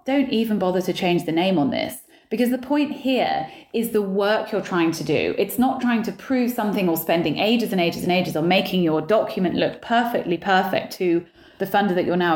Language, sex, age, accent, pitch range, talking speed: English, female, 30-49, British, 175-235 Hz, 225 wpm